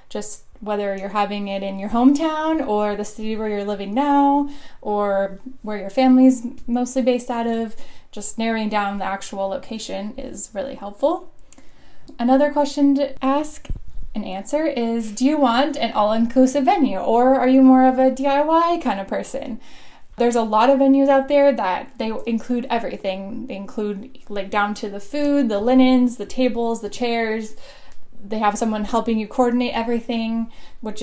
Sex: female